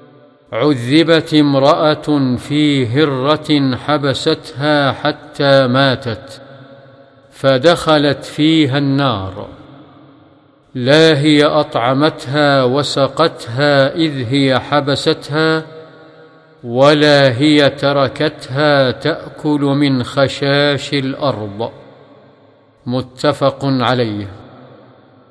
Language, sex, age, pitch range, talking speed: Arabic, male, 50-69, 130-150 Hz, 60 wpm